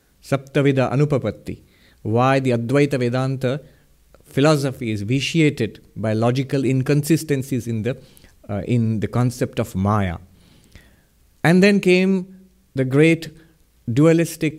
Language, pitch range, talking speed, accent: English, 110-145 Hz, 105 wpm, Indian